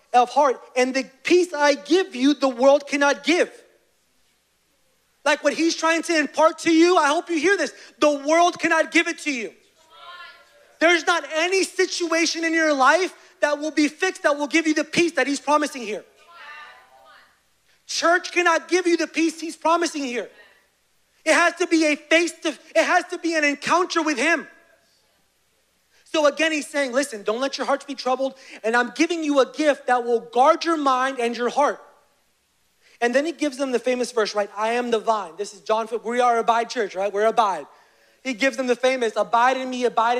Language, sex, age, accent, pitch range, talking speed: English, male, 30-49, American, 255-325 Hz, 200 wpm